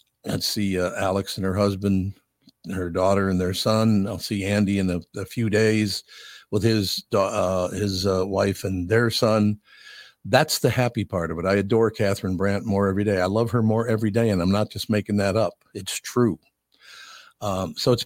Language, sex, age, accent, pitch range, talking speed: English, male, 50-69, American, 95-115 Hz, 205 wpm